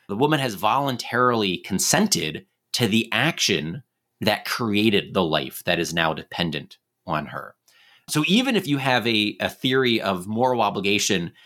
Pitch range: 100-135 Hz